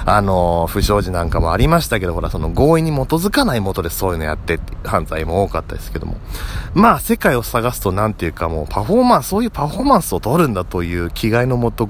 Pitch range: 85-135 Hz